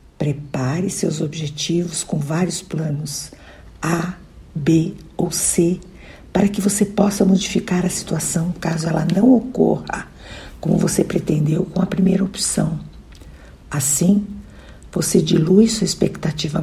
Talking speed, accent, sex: 120 wpm, Brazilian, female